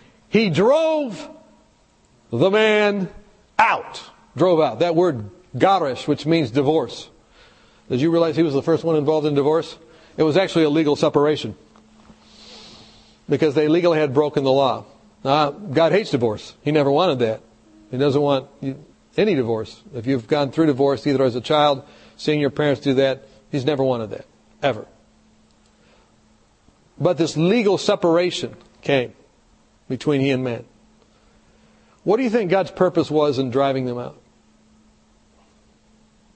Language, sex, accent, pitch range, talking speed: English, male, American, 135-185 Hz, 145 wpm